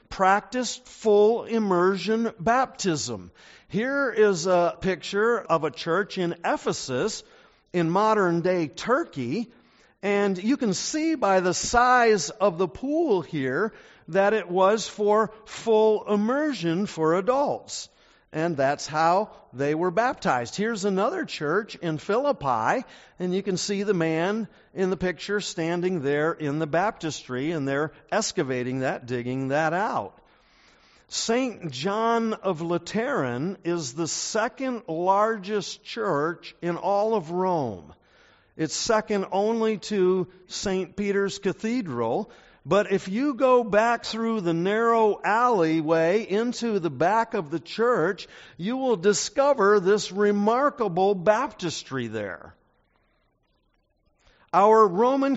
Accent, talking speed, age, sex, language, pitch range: American, 120 wpm, 50-69, male, English, 170-225 Hz